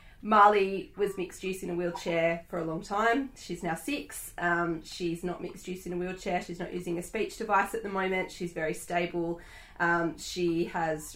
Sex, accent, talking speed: female, Australian, 200 wpm